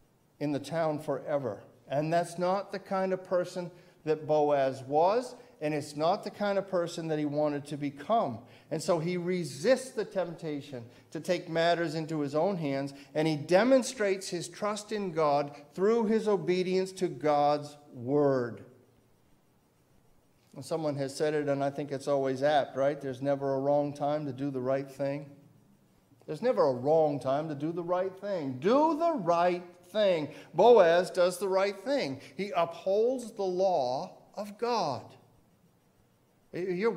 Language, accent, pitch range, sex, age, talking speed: English, American, 140-195 Hz, male, 50-69, 160 wpm